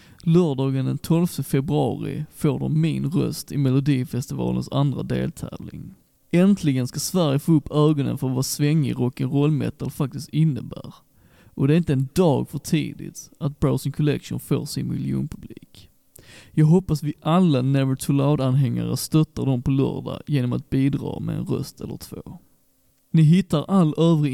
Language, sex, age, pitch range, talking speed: Swedish, male, 20-39, 135-160 Hz, 155 wpm